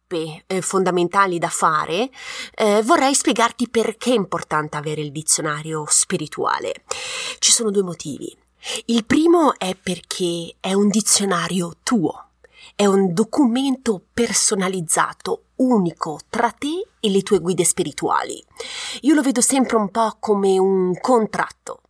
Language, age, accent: Italian, 30-49, native